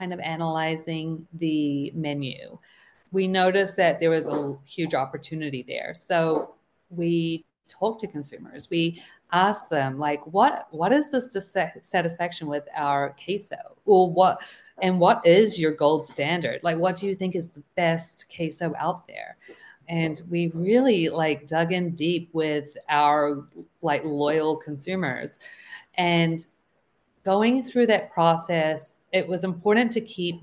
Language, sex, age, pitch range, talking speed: English, female, 40-59, 150-185 Hz, 140 wpm